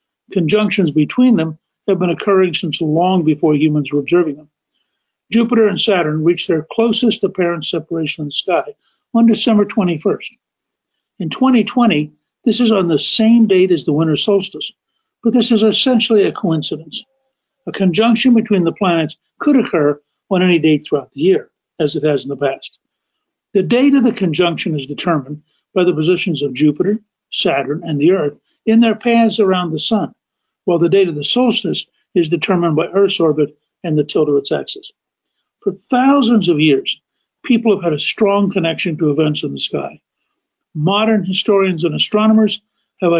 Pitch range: 160-215 Hz